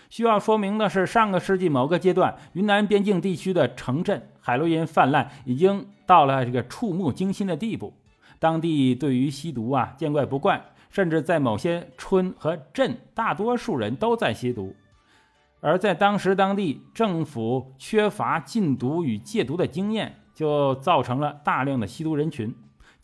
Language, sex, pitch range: Chinese, male, 135-190 Hz